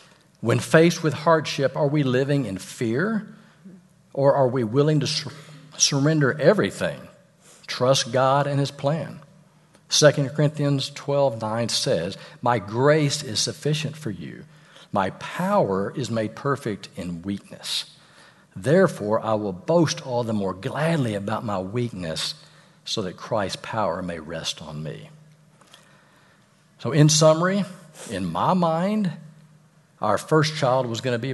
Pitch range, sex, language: 120-165 Hz, male, English